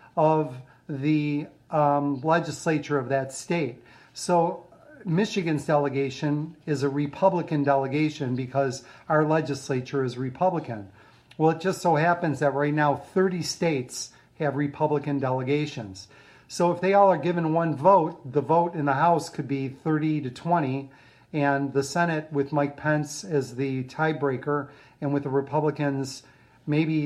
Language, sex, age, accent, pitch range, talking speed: English, male, 40-59, American, 135-155 Hz, 140 wpm